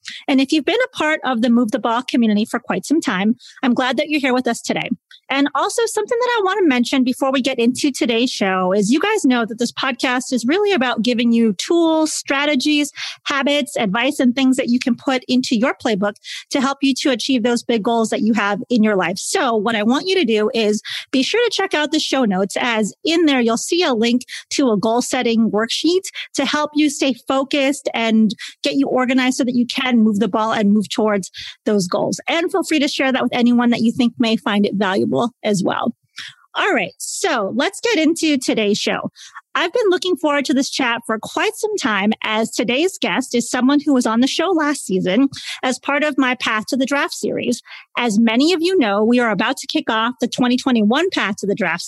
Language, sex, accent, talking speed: English, female, American, 230 wpm